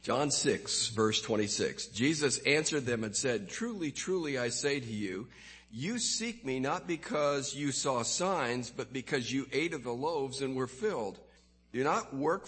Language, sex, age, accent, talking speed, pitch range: English, male, 50-69, American, 175 wpm, 110-150 Hz